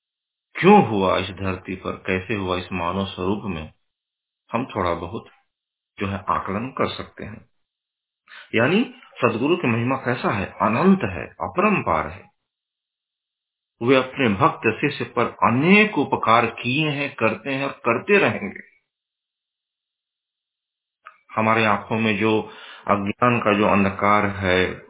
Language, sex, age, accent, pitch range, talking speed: Hindi, male, 50-69, native, 95-130 Hz, 130 wpm